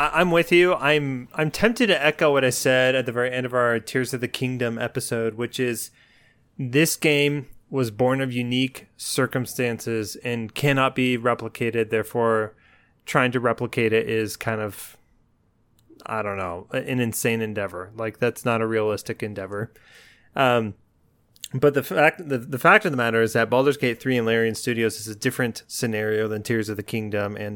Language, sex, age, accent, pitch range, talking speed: English, male, 20-39, American, 110-130 Hz, 180 wpm